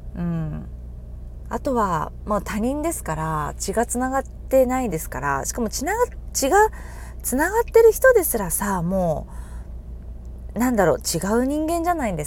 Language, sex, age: Japanese, female, 20-39